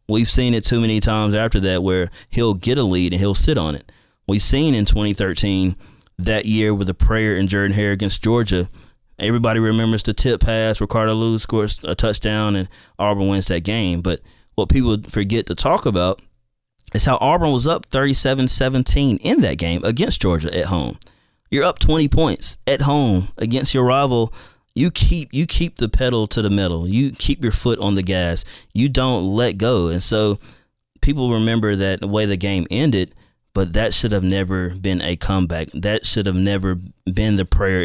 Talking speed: 190 wpm